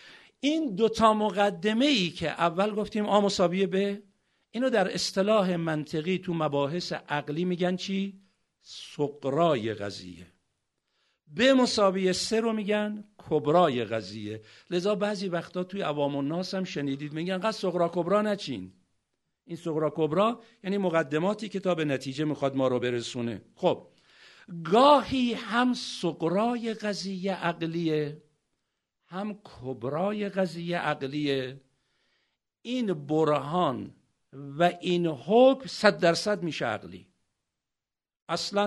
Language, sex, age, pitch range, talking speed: Persian, male, 50-69, 140-200 Hz, 110 wpm